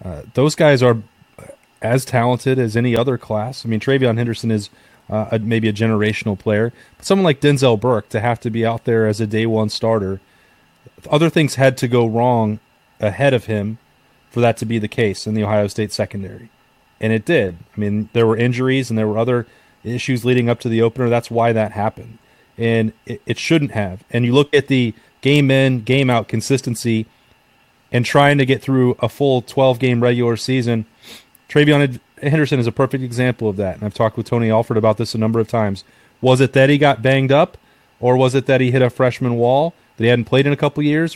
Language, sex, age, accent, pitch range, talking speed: English, male, 30-49, American, 110-135 Hz, 210 wpm